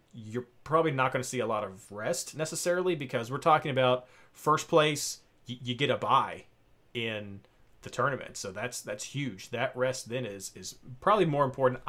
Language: English